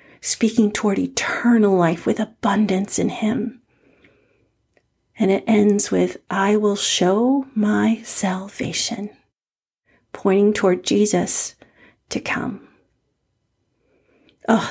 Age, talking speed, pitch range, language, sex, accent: 40-59, 95 wpm, 180-230 Hz, English, female, American